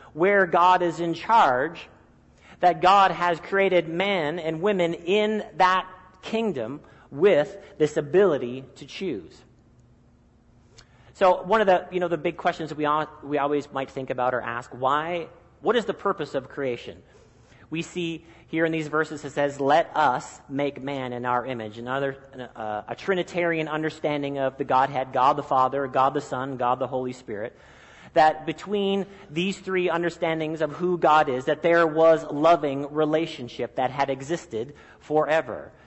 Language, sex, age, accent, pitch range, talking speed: English, male, 40-59, American, 130-185 Hz, 160 wpm